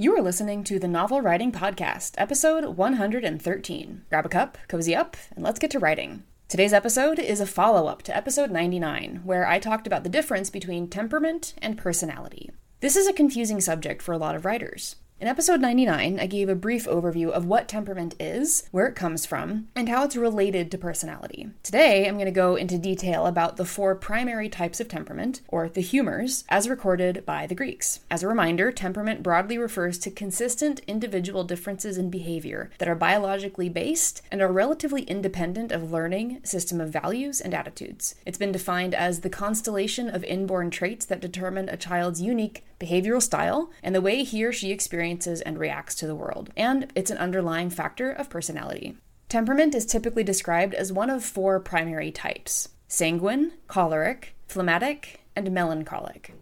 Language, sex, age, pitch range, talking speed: English, female, 20-39, 175-235 Hz, 180 wpm